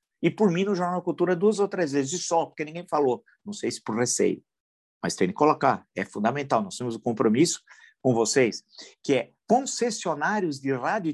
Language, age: Portuguese, 50-69